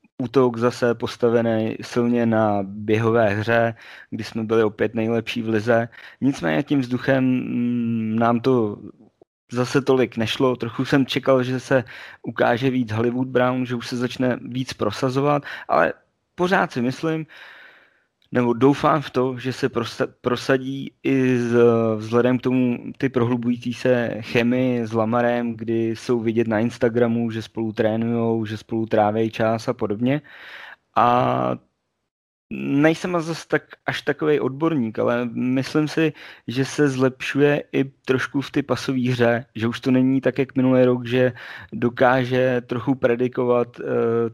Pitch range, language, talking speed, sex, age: 115-130 Hz, Slovak, 140 wpm, male, 20-39